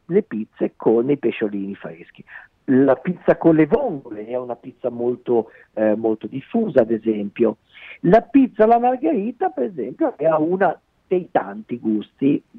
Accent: native